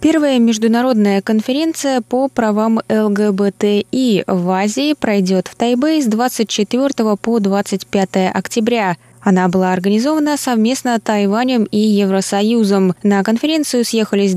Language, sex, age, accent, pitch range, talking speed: Russian, female, 20-39, native, 185-235 Hz, 110 wpm